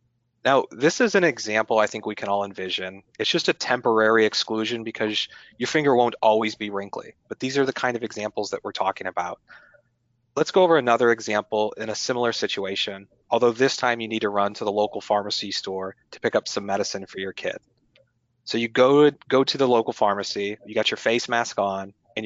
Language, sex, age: English, male, 30-49